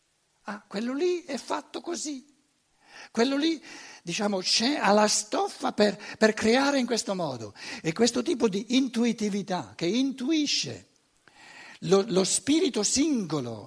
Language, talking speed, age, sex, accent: Italian, 125 wpm, 60-79, male, native